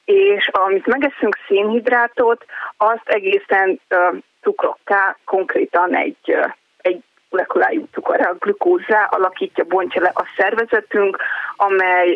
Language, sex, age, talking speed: Hungarian, female, 20-39, 110 wpm